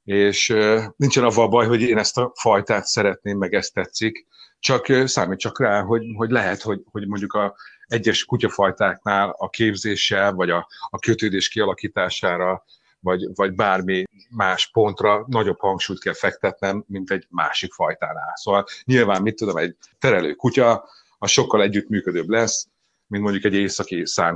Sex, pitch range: male, 95-115 Hz